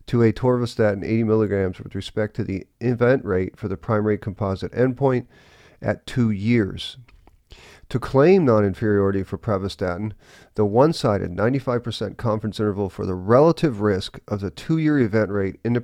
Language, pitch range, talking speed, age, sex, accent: English, 100-125 Hz, 150 wpm, 40-59, male, American